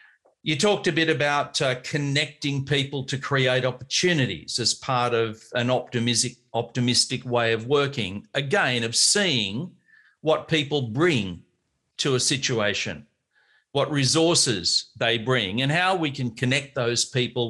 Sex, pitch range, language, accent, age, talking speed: male, 125-145 Hz, English, Australian, 50-69, 135 wpm